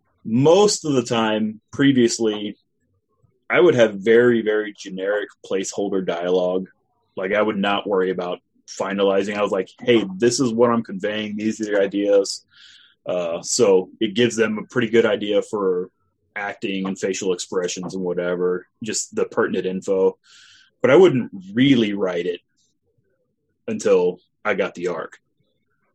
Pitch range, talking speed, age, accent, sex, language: 100-120 Hz, 150 wpm, 30-49, American, male, English